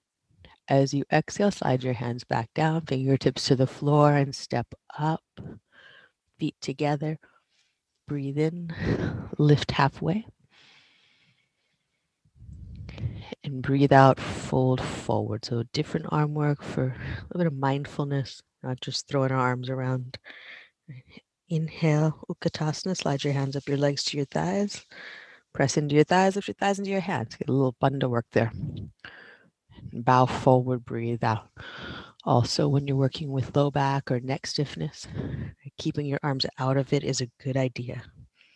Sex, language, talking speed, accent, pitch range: female, English, 145 wpm, American, 130-155 Hz